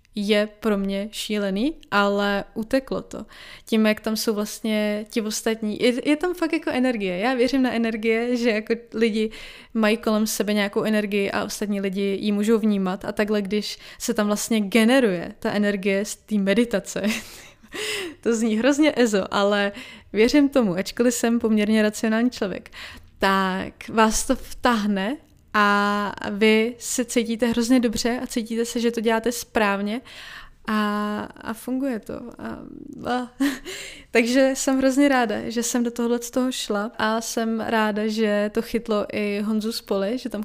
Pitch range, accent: 210-240 Hz, native